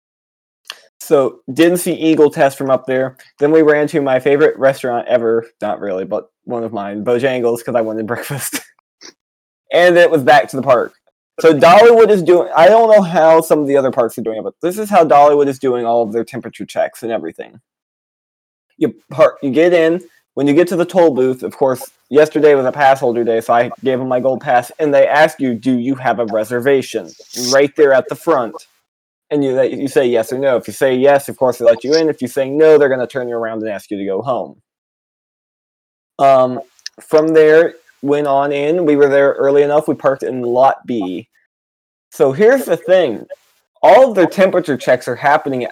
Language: English